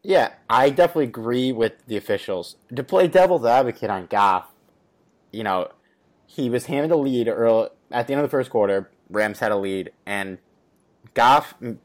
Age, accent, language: 20-39, American, English